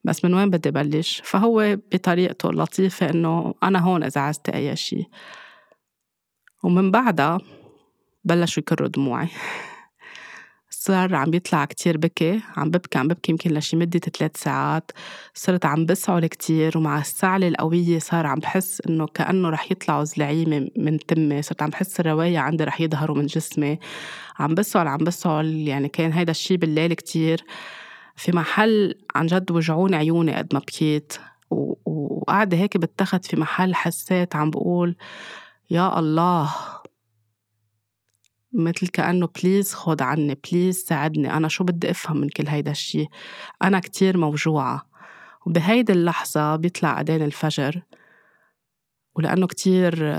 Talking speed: 135 wpm